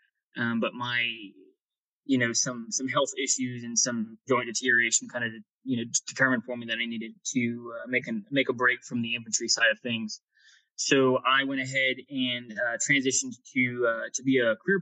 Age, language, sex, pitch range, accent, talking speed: 20-39, English, male, 120-155 Hz, American, 200 wpm